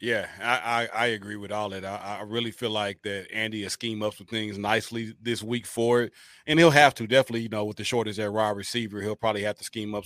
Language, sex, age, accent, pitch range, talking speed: English, male, 30-49, American, 110-130 Hz, 260 wpm